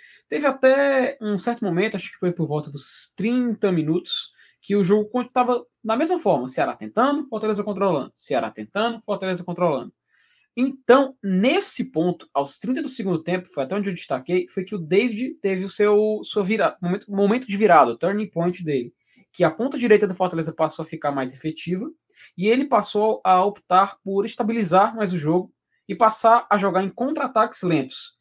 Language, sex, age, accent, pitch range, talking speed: Portuguese, male, 20-39, Brazilian, 175-240 Hz, 185 wpm